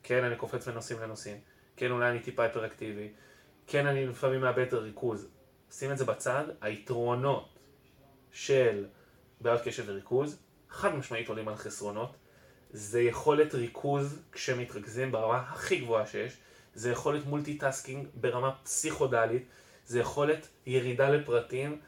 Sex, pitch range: male, 120-150 Hz